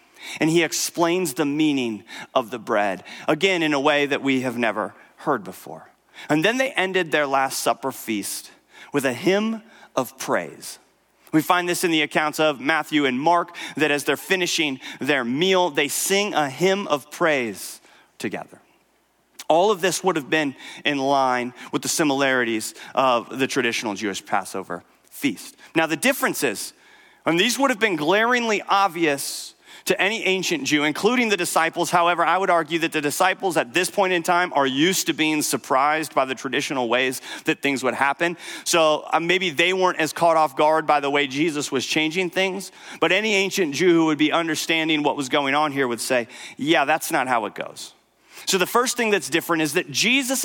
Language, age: English, 40-59